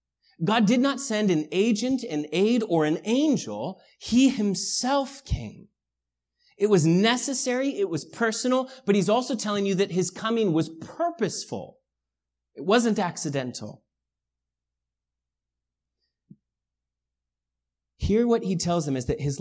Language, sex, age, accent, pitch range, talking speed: English, male, 30-49, American, 130-205 Hz, 125 wpm